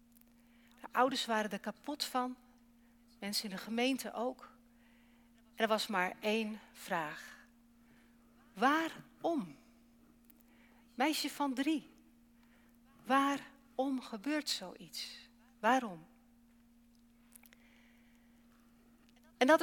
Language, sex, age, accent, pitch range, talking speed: English, female, 60-79, Dutch, 230-255 Hz, 80 wpm